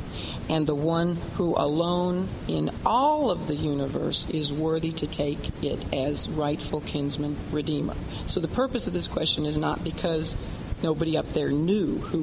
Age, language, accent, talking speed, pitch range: 50-69, English, American, 160 wpm, 150-180 Hz